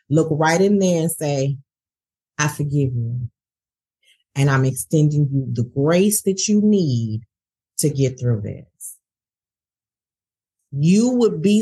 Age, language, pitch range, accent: 40-59, English, 145-200 Hz, American